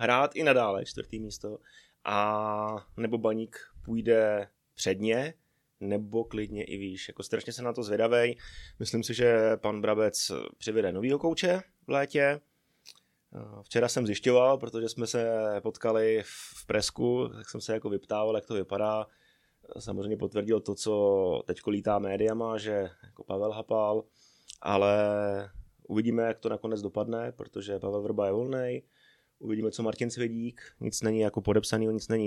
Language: Czech